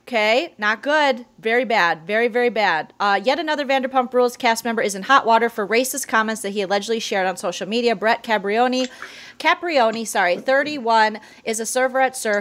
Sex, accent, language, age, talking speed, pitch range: female, American, English, 30-49, 185 wpm, 210-265 Hz